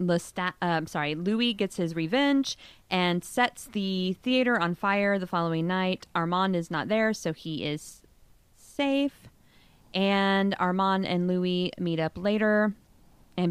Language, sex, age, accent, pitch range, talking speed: English, female, 20-39, American, 160-195 Hz, 145 wpm